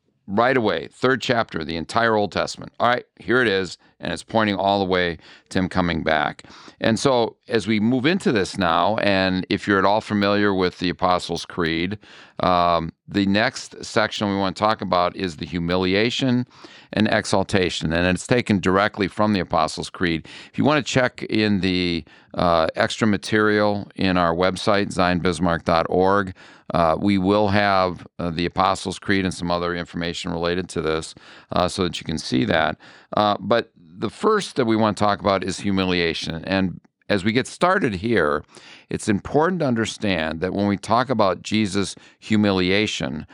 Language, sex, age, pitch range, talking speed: English, male, 50-69, 85-105 Hz, 175 wpm